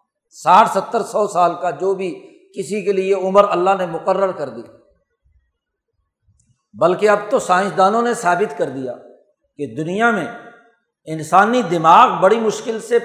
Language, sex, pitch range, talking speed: Urdu, male, 185-235 Hz, 145 wpm